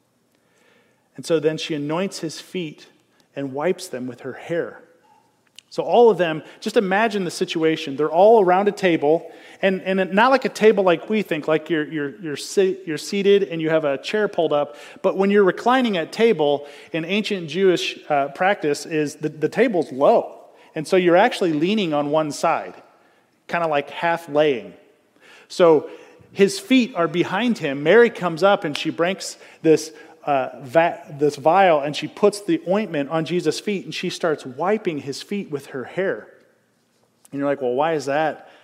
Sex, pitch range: male, 150-190 Hz